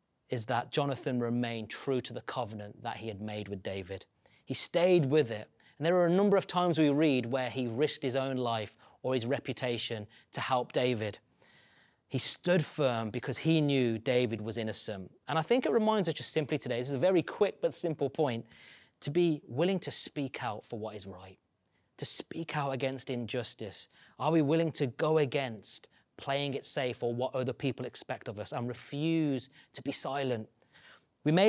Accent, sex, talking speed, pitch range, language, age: British, male, 195 wpm, 120-150 Hz, English, 30-49